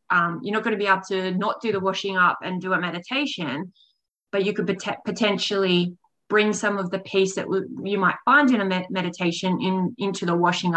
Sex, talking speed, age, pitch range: female, 215 wpm, 20-39, 185-210 Hz